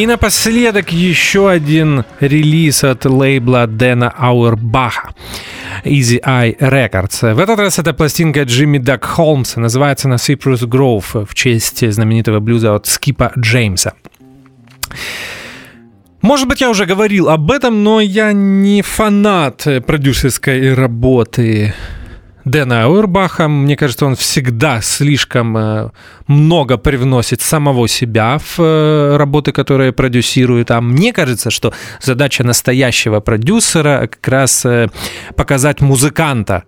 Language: Russian